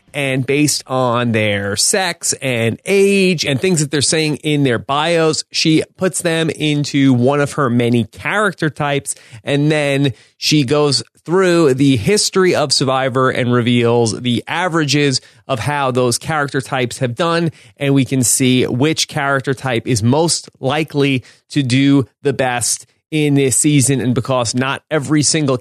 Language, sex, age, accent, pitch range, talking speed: English, male, 30-49, American, 125-155 Hz, 155 wpm